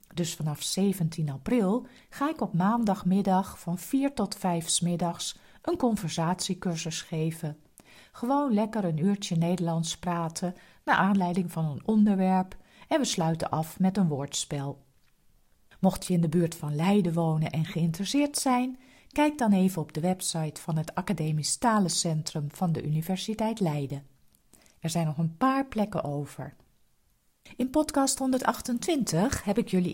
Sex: female